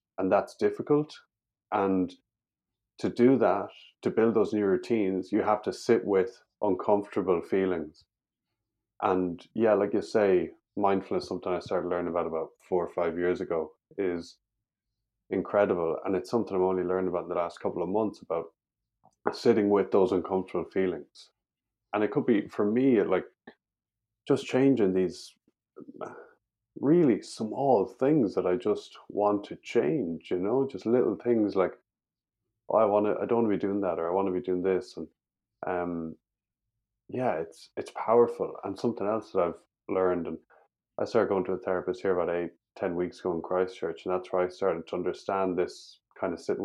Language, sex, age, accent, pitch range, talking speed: English, male, 20-39, Irish, 90-110 Hz, 180 wpm